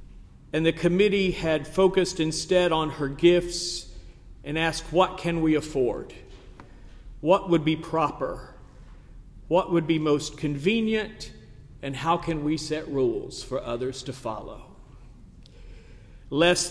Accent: American